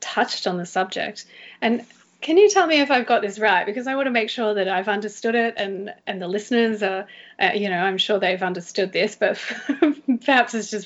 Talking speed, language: 225 wpm, English